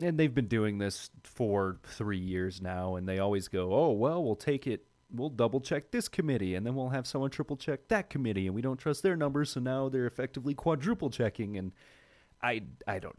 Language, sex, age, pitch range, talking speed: English, male, 30-49, 95-130 Hz, 220 wpm